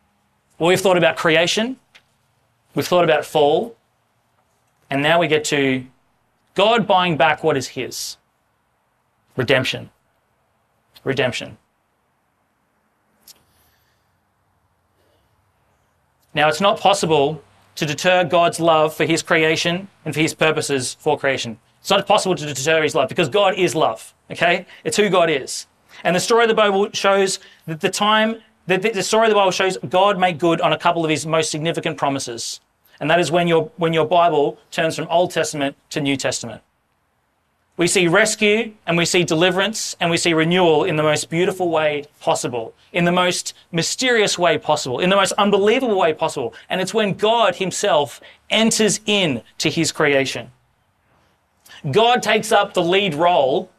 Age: 30-49